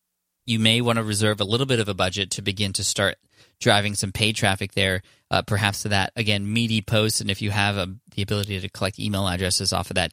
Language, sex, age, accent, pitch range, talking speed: English, male, 20-39, American, 95-115 Hz, 245 wpm